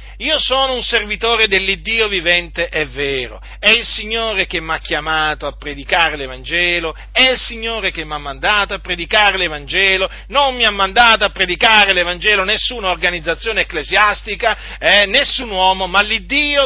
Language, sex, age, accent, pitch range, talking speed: Italian, male, 40-59, native, 185-245 Hz, 155 wpm